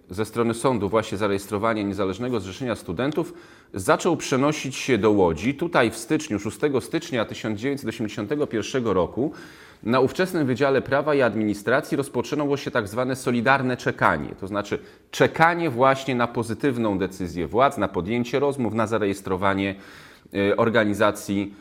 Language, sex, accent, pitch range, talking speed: Polish, male, native, 100-140 Hz, 130 wpm